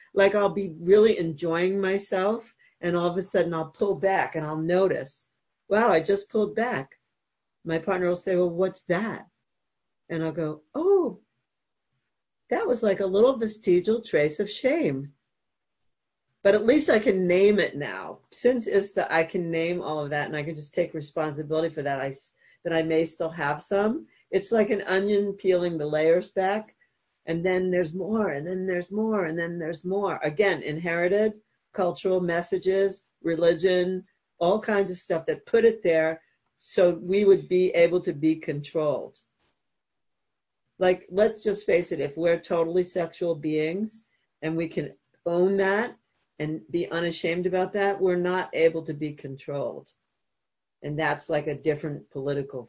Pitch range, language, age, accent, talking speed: 160-200 Hz, English, 50-69, American, 165 wpm